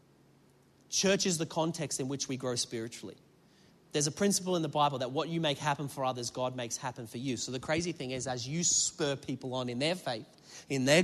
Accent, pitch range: Australian, 130-180 Hz